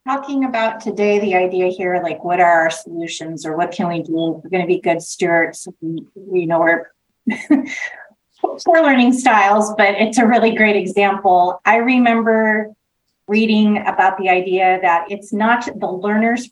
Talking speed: 165 wpm